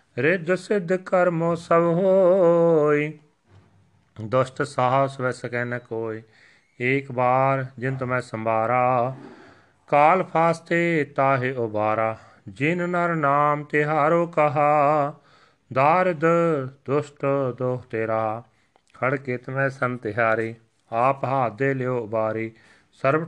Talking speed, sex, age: 105 wpm, male, 40-59